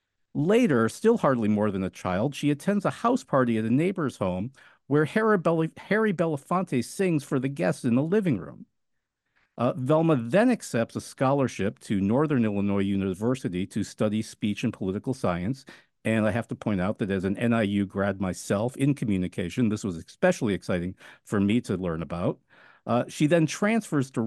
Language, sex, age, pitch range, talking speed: English, male, 50-69, 105-150 Hz, 175 wpm